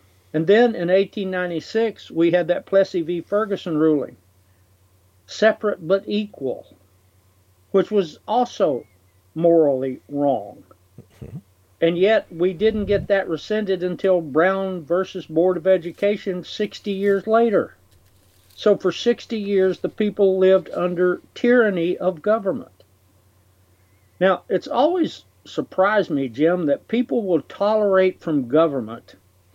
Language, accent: English, American